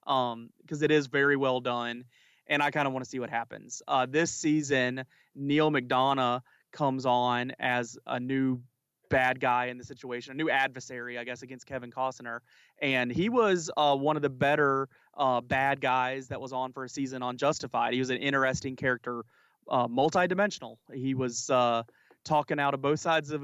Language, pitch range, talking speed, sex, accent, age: English, 125-150 Hz, 190 wpm, male, American, 30-49